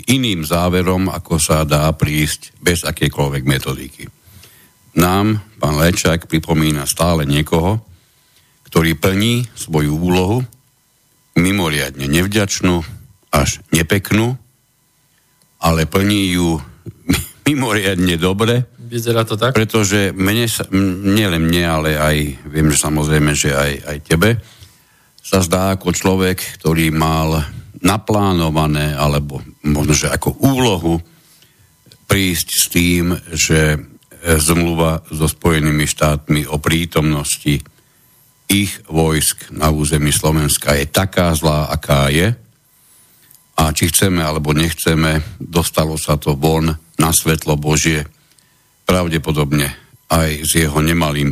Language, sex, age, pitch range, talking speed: Slovak, male, 60-79, 75-100 Hz, 105 wpm